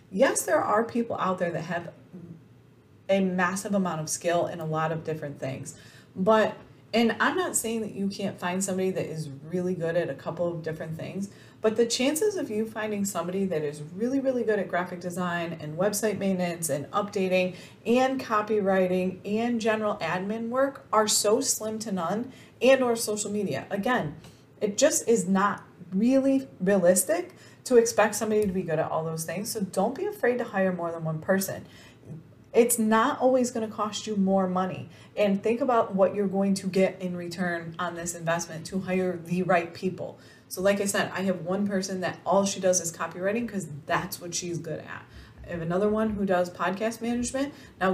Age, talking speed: 30-49, 195 wpm